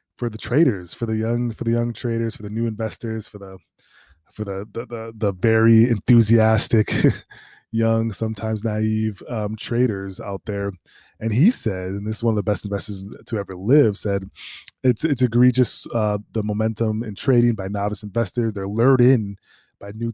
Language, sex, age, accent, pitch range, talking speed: English, male, 20-39, American, 100-115 Hz, 180 wpm